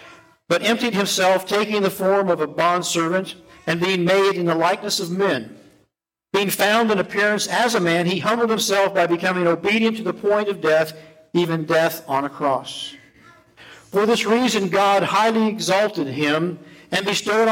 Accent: American